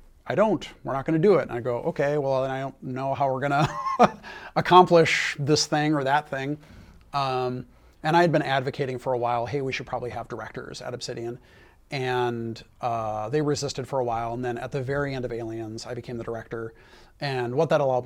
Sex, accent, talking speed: male, American, 225 wpm